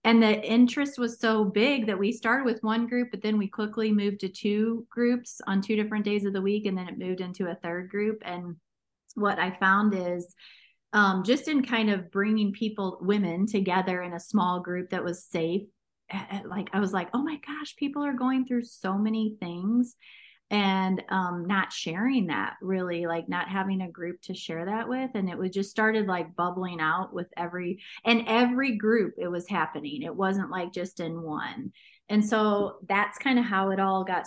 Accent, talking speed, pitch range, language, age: American, 205 wpm, 180-220 Hz, English, 30-49